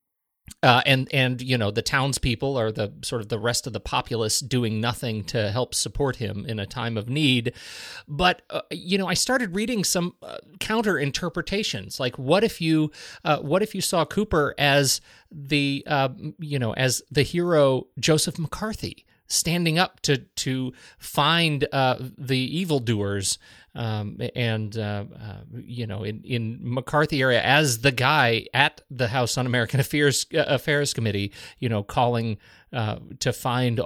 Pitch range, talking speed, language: 115-150 Hz, 165 wpm, English